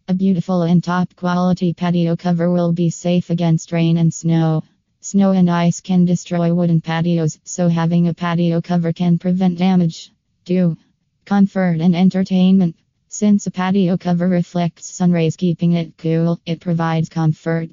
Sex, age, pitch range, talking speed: female, 20-39, 165-180 Hz, 150 wpm